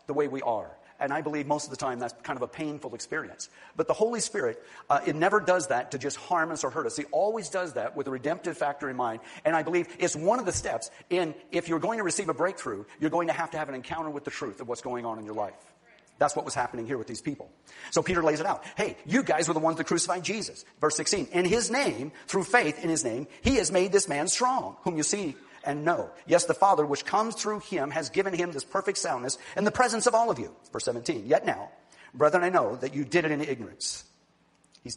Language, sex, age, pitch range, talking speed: English, male, 40-59, 125-180 Hz, 265 wpm